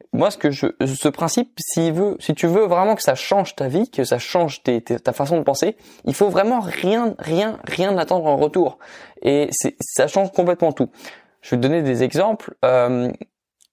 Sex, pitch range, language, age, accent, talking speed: male, 130-185 Hz, French, 20-39, French, 210 wpm